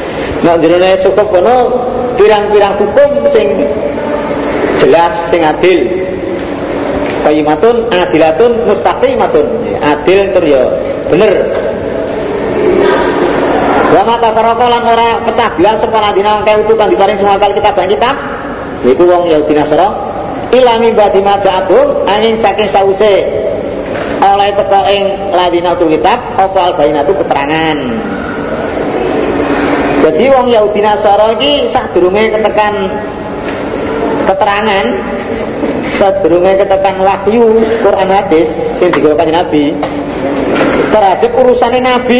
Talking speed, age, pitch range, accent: 105 wpm, 40-59, 185-235 Hz, native